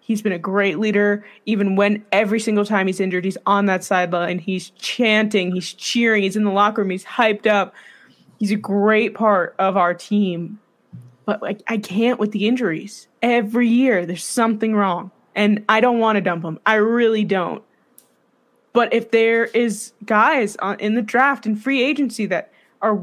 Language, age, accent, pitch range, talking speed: English, 20-39, American, 190-235 Hz, 180 wpm